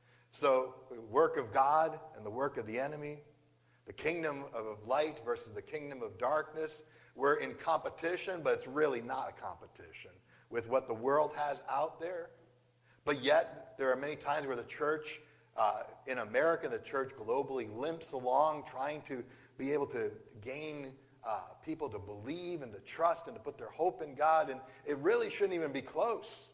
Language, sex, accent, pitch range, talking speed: English, male, American, 125-160 Hz, 180 wpm